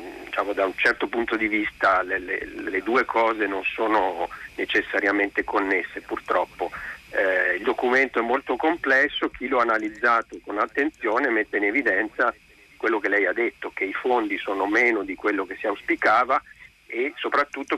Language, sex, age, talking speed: Italian, male, 50-69, 160 wpm